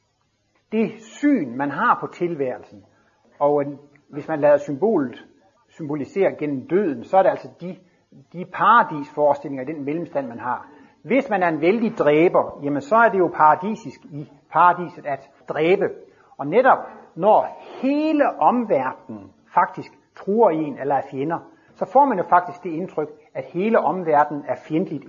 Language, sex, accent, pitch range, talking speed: Danish, male, native, 140-190 Hz, 160 wpm